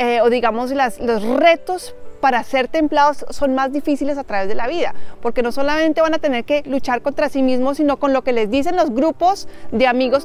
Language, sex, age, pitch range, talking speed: Spanish, female, 30-49, 245-310 Hz, 220 wpm